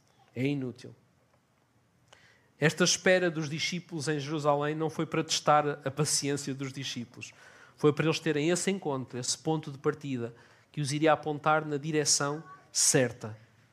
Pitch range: 140-180 Hz